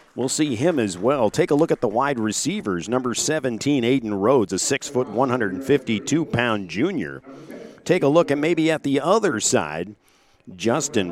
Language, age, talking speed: English, 50-69, 175 wpm